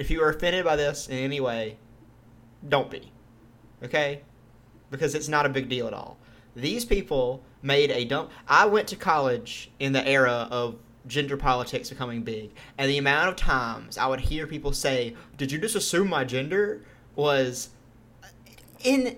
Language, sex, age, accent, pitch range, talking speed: English, male, 30-49, American, 120-170 Hz, 170 wpm